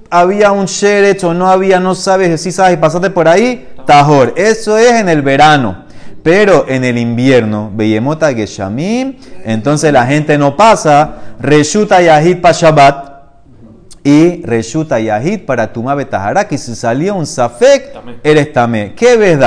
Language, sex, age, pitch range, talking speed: Spanish, male, 30-49, 135-200 Hz, 150 wpm